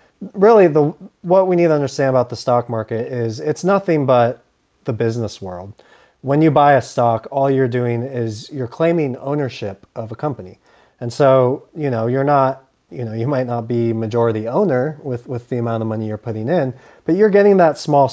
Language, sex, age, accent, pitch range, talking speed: English, male, 30-49, American, 115-140 Hz, 200 wpm